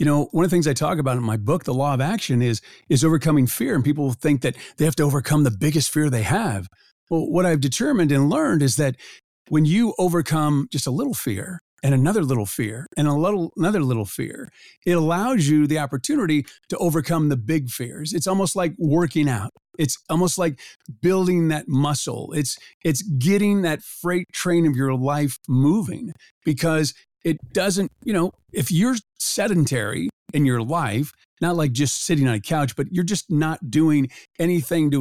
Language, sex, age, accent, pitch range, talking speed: English, male, 50-69, American, 135-170 Hz, 195 wpm